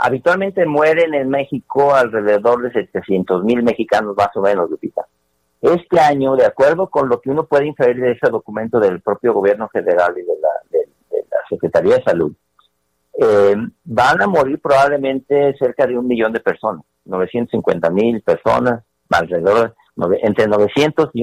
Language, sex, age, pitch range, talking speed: Spanish, male, 50-69, 110-150 Hz, 165 wpm